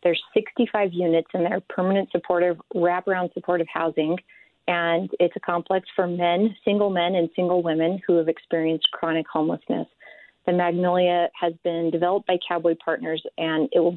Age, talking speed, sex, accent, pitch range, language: 30-49, 160 wpm, female, American, 170-185 Hz, English